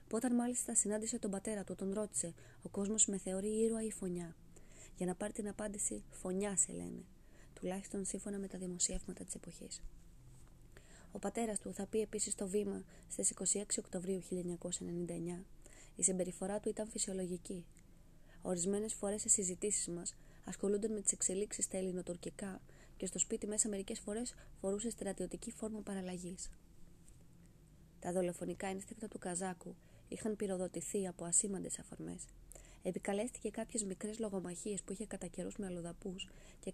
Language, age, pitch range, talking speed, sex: Greek, 20-39, 180-215 Hz, 145 wpm, female